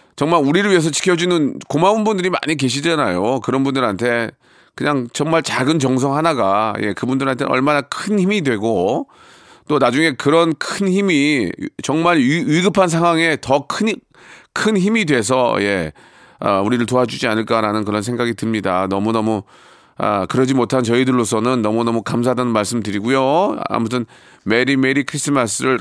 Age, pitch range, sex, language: 40-59, 110-150 Hz, male, Korean